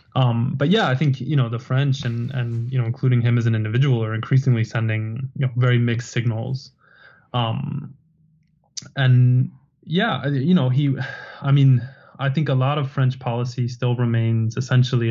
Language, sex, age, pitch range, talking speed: English, male, 20-39, 120-140 Hz, 175 wpm